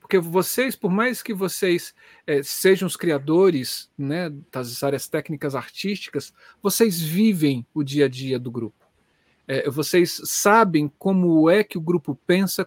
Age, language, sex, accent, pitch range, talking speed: 50-69, Portuguese, male, Brazilian, 140-195 Hz, 140 wpm